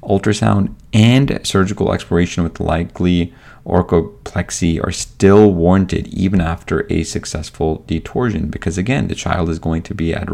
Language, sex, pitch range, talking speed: English, male, 80-100 Hz, 140 wpm